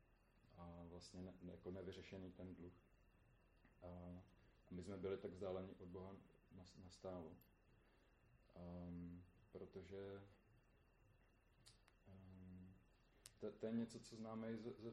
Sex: male